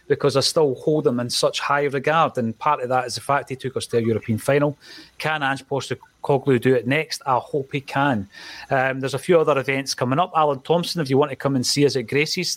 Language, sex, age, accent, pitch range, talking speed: English, male, 30-49, British, 125-145 Hz, 260 wpm